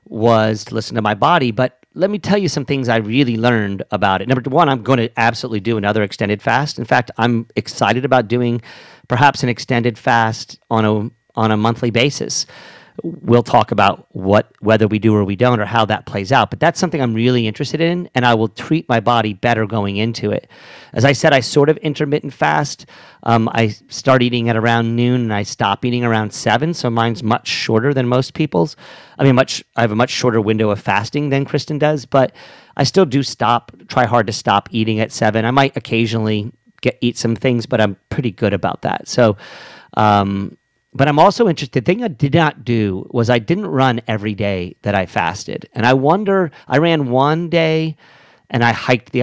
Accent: American